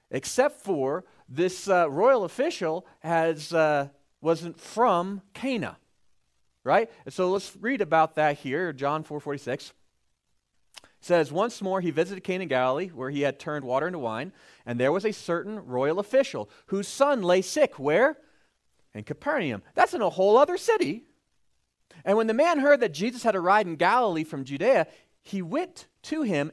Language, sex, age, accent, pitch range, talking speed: English, male, 40-59, American, 145-215 Hz, 165 wpm